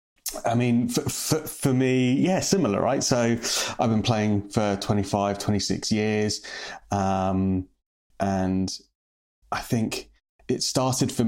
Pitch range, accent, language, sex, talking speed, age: 95-110 Hz, British, English, male, 120 wpm, 30-49